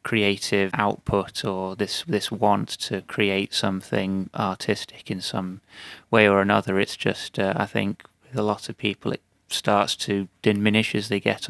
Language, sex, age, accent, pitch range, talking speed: English, male, 30-49, British, 95-105 Hz, 165 wpm